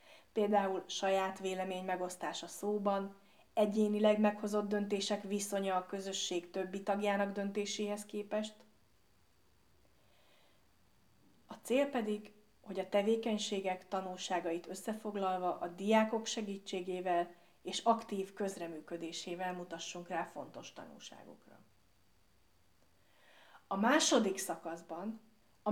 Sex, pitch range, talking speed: female, 180-215 Hz, 85 wpm